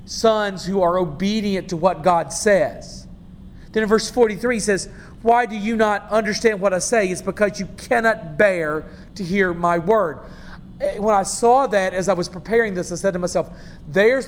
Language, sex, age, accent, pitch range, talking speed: English, male, 40-59, American, 180-215 Hz, 190 wpm